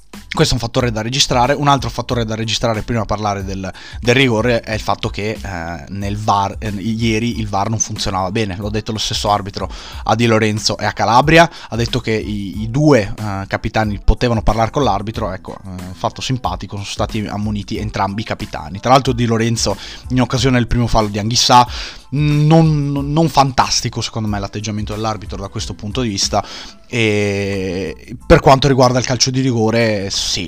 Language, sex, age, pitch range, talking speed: Italian, male, 20-39, 100-120 Hz, 190 wpm